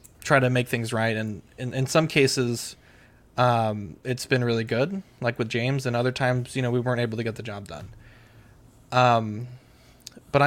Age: 20-39